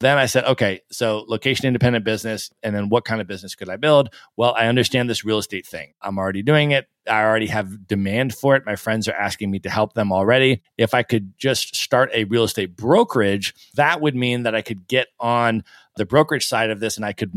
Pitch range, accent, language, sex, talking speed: 105-130 Hz, American, English, male, 230 wpm